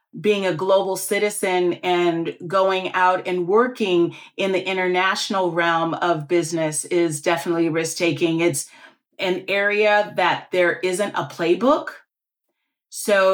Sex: female